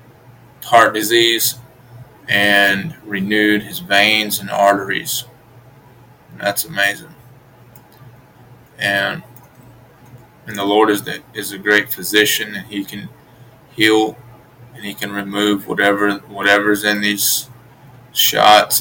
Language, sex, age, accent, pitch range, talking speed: English, male, 20-39, American, 100-125 Hz, 110 wpm